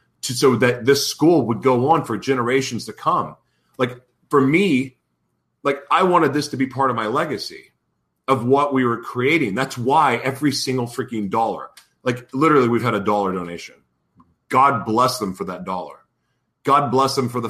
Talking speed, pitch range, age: 180 wpm, 110-145 Hz, 40-59